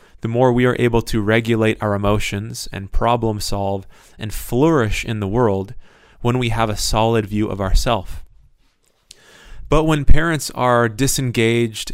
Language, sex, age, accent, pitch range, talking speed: English, male, 30-49, American, 105-120 Hz, 150 wpm